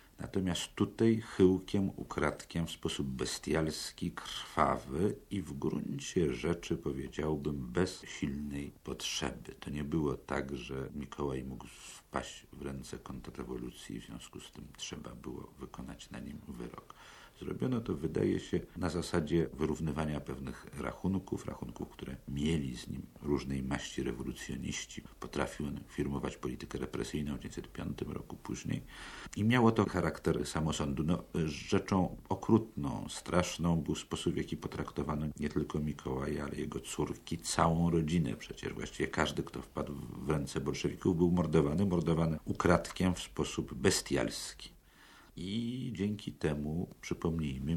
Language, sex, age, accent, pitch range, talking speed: Polish, male, 50-69, native, 70-85 Hz, 130 wpm